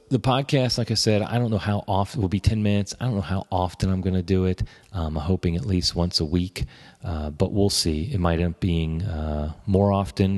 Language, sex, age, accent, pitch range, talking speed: English, male, 30-49, American, 80-100 Hz, 255 wpm